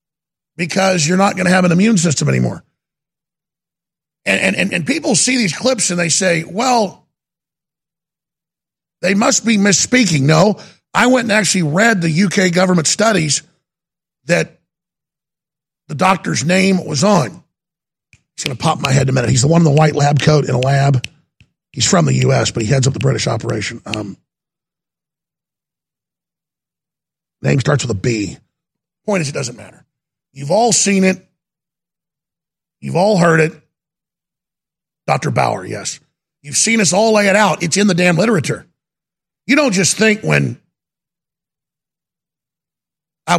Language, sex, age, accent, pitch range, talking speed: English, male, 50-69, American, 150-185 Hz, 155 wpm